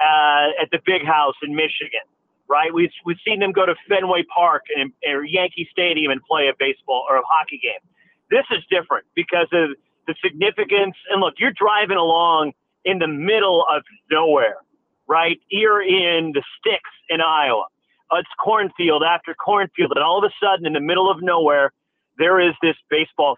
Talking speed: 180 wpm